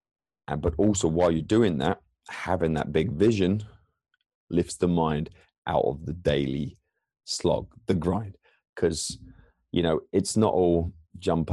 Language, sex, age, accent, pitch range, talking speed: English, male, 30-49, British, 80-100 Hz, 145 wpm